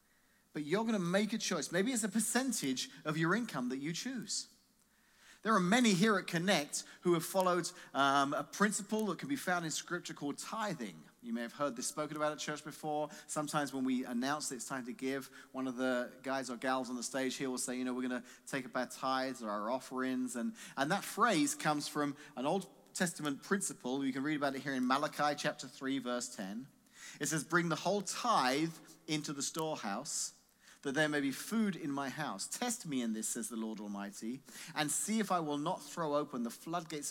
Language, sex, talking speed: English, male, 225 wpm